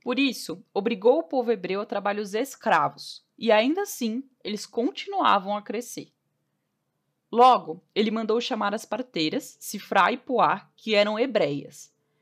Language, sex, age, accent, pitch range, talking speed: Portuguese, female, 10-29, Brazilian, 195-260 Hz, 135 wpm